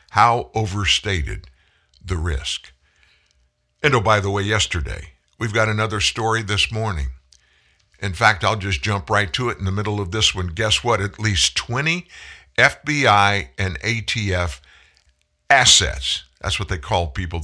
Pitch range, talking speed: 75-115 Hz, 150 wpm